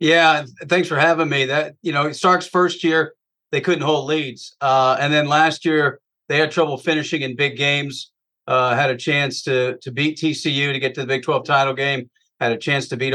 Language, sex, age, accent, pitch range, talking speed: English, male, 40-59, American, 130-160 Hz, 220 wpm